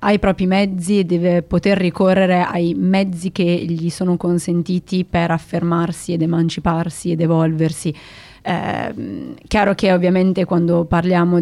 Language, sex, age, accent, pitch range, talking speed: Italian, female, 20-39, native, 165-180 Hz, 135 wpm